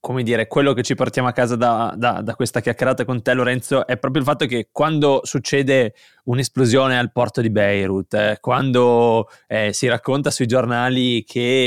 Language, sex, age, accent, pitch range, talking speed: Italian, male, 20-39, native, 120-135 Hz, 185 wpm